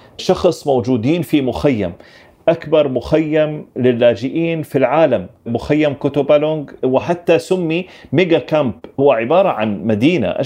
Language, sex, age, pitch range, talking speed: Arabic, male, 40-59, 130-165 Hz, 110 wpm